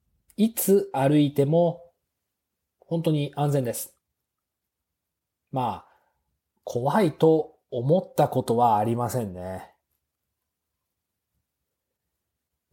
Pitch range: 110-165 Hz